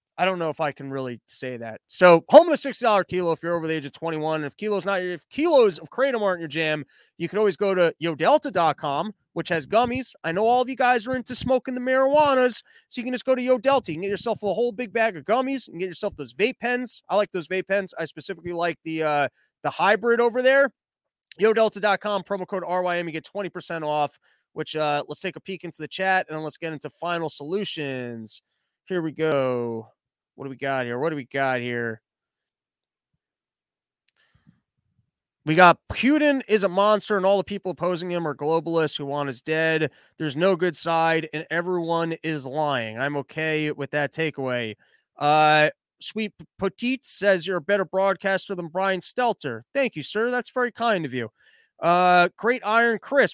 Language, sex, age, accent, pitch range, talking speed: English, male, 20-39, American, 155-220 Hz, 200 wpm